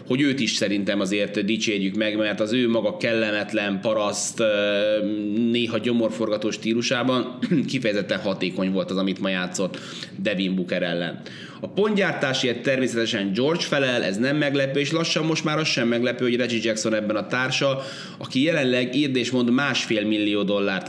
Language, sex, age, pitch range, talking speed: Hungarian, male, 30-49, 105-130 Hz, 150 wpm